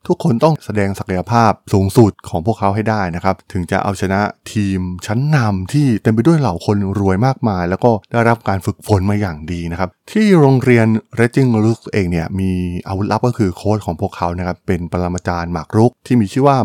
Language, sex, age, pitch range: Thai, male, 20-39, 95-125 Hz